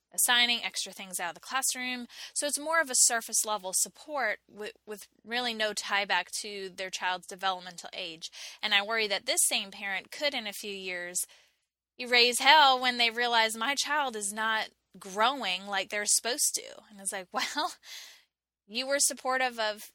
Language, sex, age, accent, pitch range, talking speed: English, female, 10-29, American, 195-245 Hz, 180 wpm